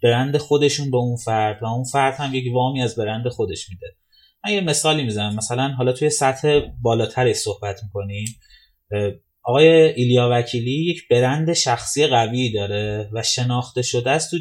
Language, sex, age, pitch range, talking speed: Persian, male, 30-49, 110-155 Hz, 160 wpm